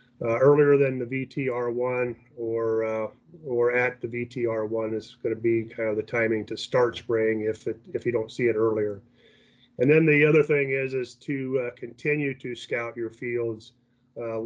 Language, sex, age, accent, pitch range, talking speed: English, male, 30-49, American, 115-135 Hz, 185 wpm